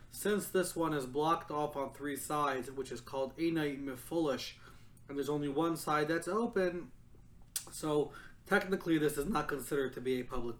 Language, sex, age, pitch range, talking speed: English, male, 30-49, 140-180 Hz, 170 wpm